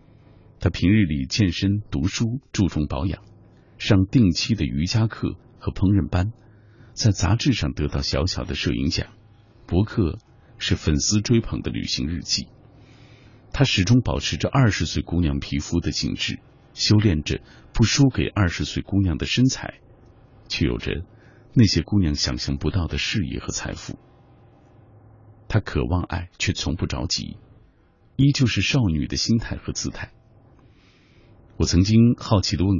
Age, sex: 50-69, male